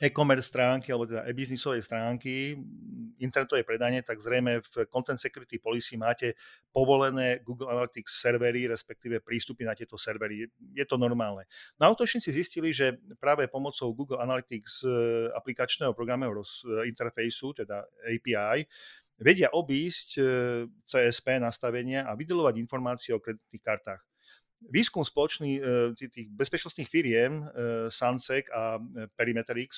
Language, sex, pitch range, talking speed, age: Slovak, male, 115-135 Hz, 115 wpm, 40-59